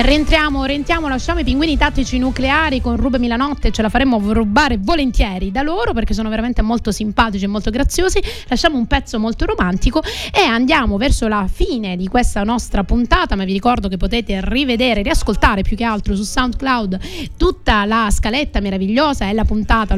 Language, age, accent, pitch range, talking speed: Italian, 30-49, native, 210-275 Hz, 175 wpm